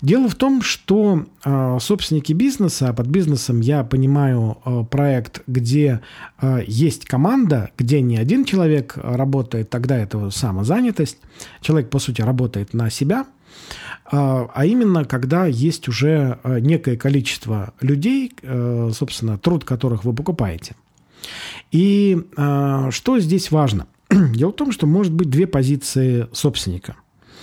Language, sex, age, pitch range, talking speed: Russian, male, 40-59, 125-175 Hz, 135 wpm